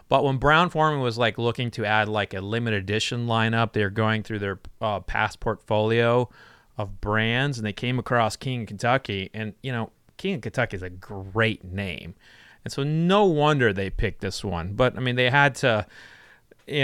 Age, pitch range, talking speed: 30-49, 105-135 Hz, 190 wpm